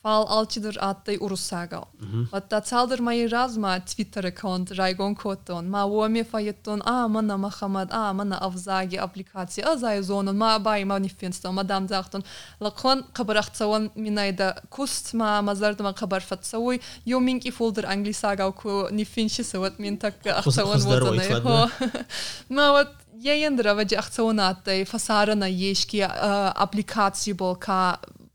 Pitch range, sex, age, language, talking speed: 190-220 Hz, female, 20-39, Russian, 40 wpm